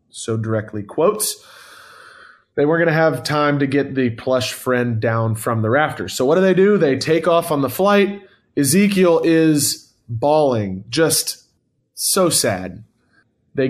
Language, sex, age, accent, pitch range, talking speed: English, male, 20-39, American, 130-170 Hz, 160 wpm